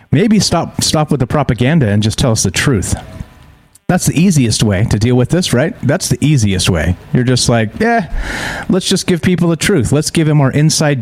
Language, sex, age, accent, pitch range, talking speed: English, male, 40-59, American, 110-145 Hz, 220 wpm